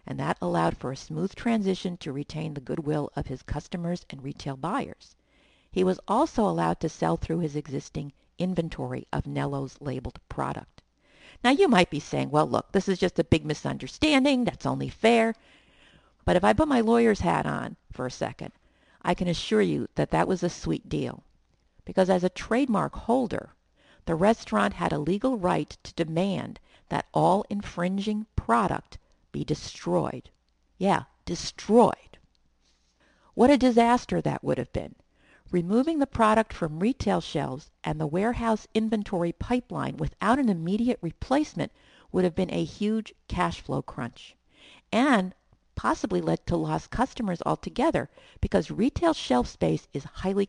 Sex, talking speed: female, 155 wpm